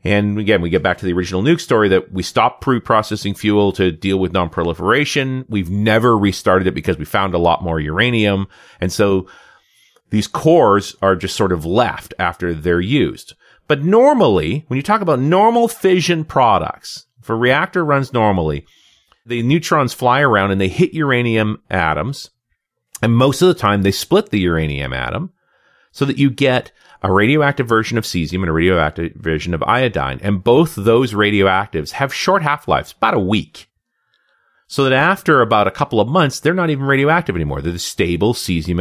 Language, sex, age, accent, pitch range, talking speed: English, male, 40-59, American, 95-145 Hz, 180 wpm